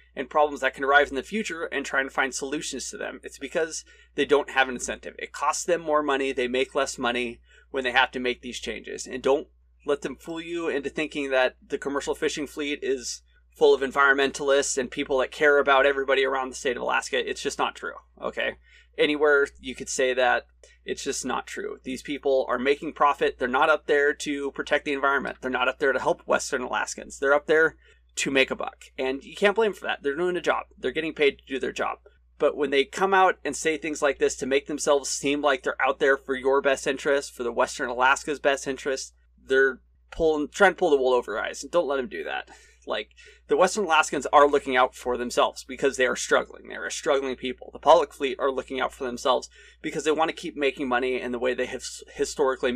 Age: 30-49